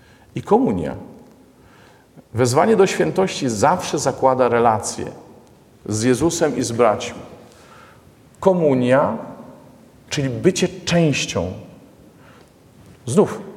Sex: male